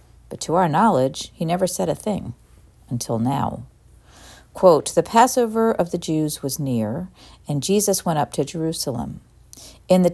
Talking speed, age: 155 wpm, 50-69